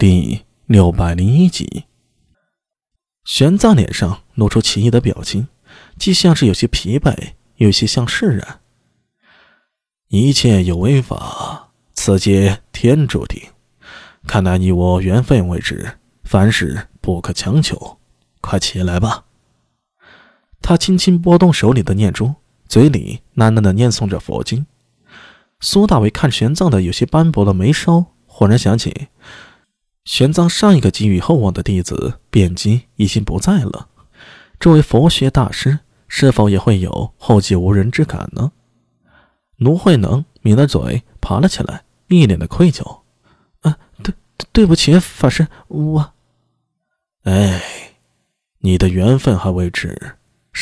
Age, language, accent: 20-39, Chinese, native